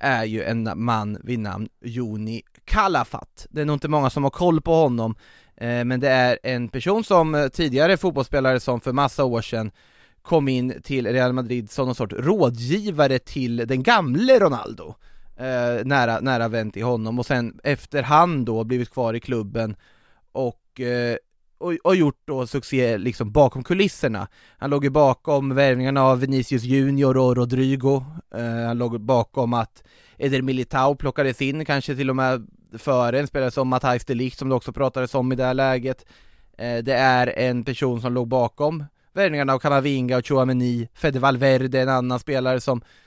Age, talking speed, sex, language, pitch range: 20-39, 180 wpm, male, Swedish, 120-140 Hz